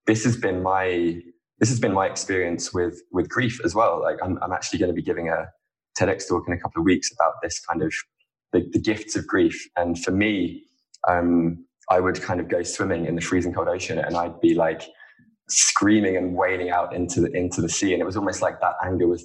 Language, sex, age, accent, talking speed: English, male, 20-39, British, 235 wpm